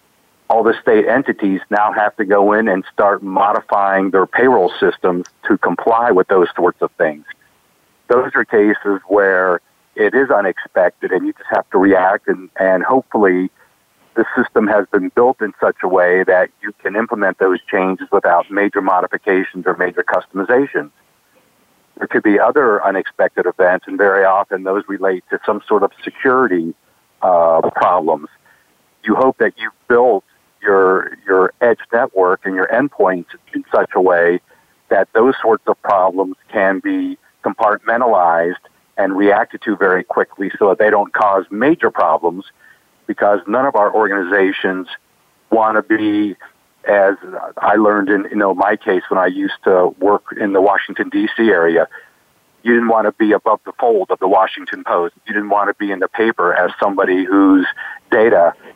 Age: 50-69